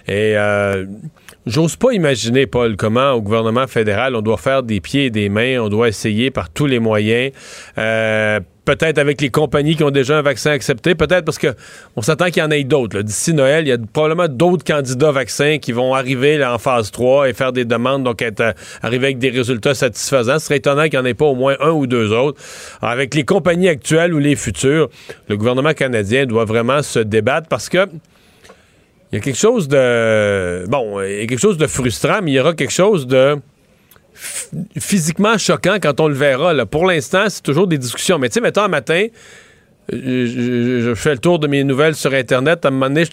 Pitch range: 125-155 Hz